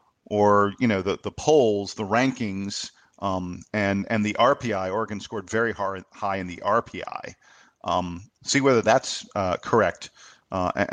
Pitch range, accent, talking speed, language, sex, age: 95-120 Hz, American, 150 wpm, English, male, 50-69